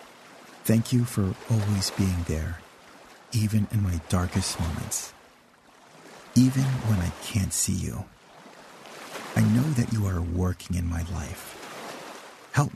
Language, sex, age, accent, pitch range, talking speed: English, male, 50-69, American, 85-110 Hz, 125 wpm